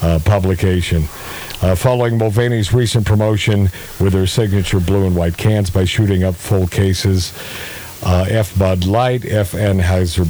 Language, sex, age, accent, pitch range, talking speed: English, male, 50-69, American, 100-130 Hz, 145 wpm